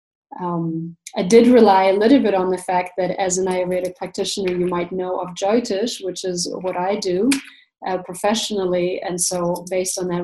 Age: 20-39